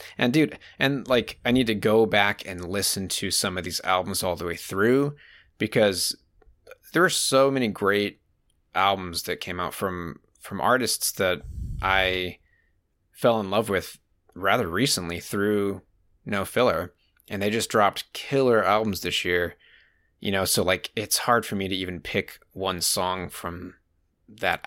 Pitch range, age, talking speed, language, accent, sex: 90-110 Hz, 20-39, 165 wpm, English, American, male